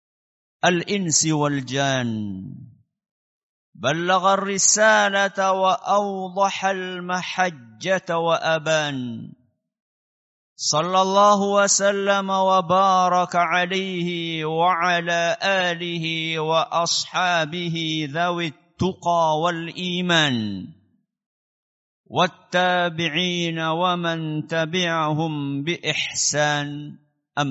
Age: 50-69